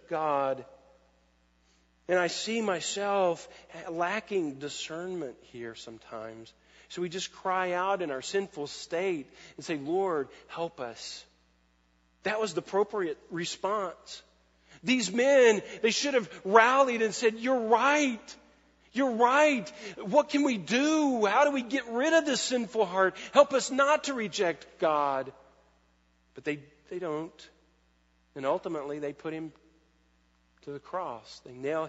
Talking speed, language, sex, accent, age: 135 wpm, English, male, American, 40-59